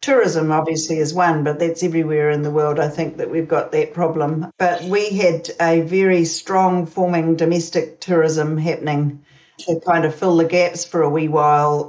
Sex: female